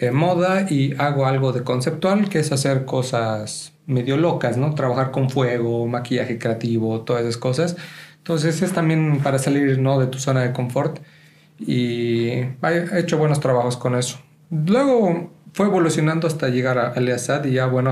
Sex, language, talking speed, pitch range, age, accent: male, Spanish, 165 wpm, 130-155 Hz, 40-59, Mexican